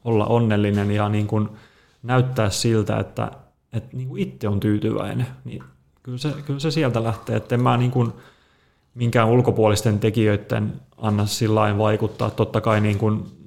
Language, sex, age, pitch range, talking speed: Finnish, male, 30-49, 105-120 Hz, 165 wpm